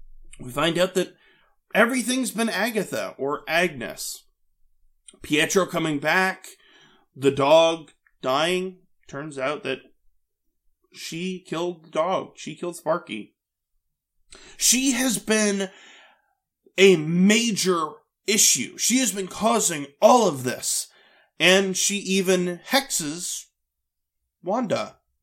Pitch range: 135-200 Hz